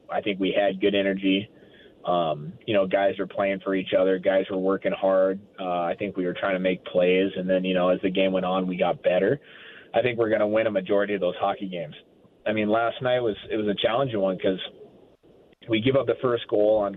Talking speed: 250 wpm